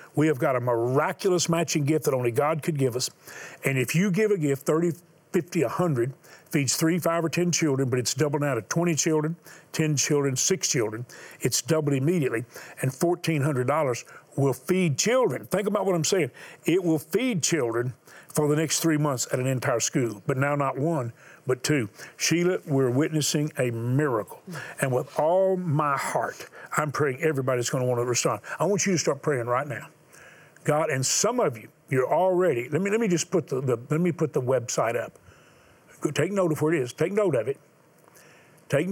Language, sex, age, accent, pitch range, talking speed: English, male, 50-69, American, 130-165 Hz, 200 wpm